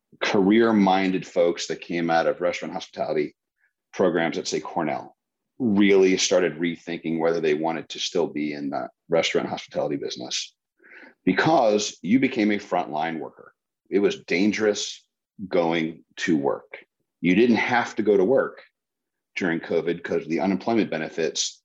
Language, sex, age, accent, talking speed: English, male, 40-59, American, 140 wpm